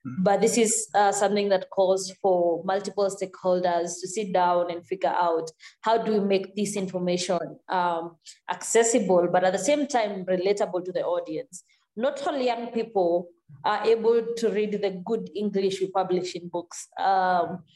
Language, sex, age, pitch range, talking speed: English, female, 20-39, 180-210 Hz, 165 wpm